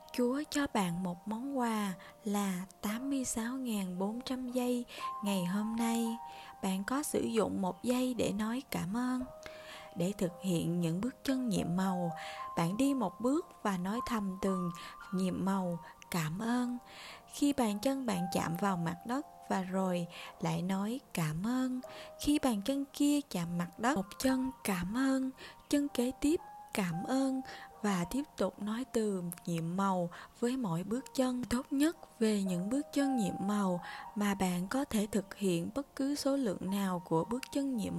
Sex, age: female, 20-39